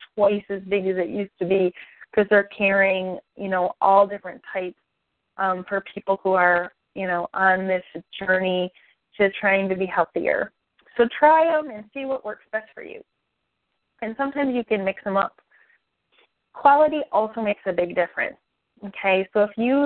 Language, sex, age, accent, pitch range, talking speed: English, female, 30-49, American, 185-215 Hz, 175 wpm